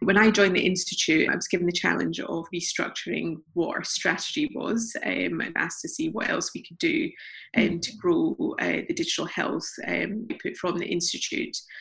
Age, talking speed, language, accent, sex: 20-39, 190 wpm, English, British, female